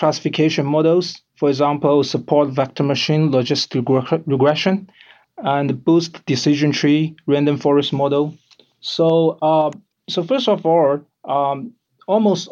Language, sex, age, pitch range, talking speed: English, male, 30-49, 135-165 Hz, 120 wpm